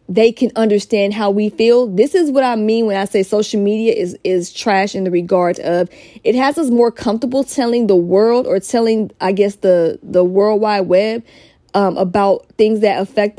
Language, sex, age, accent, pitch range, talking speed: English, female, 20-39, American, 195-240 Hz, 195 wpm